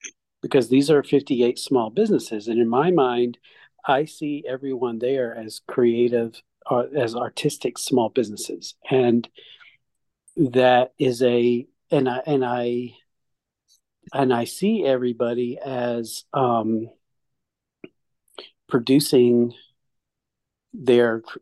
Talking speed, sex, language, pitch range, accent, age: 105 wpm, male, English, 115-140 Hz, American, 50-69